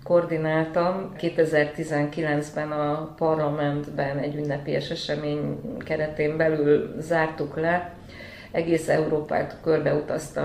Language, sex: Hungarian, female